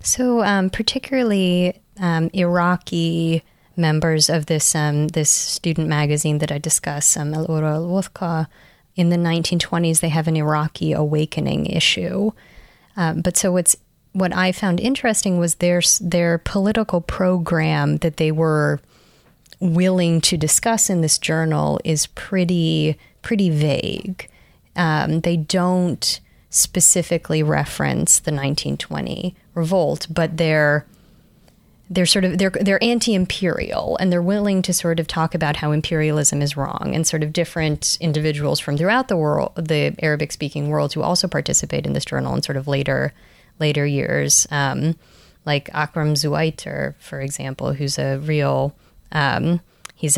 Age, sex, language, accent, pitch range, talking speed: 20-39, female, English, American, 150-180 Hz, 140 wpm